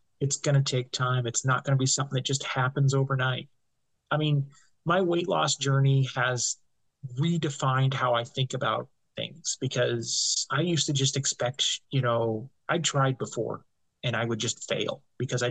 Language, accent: English, American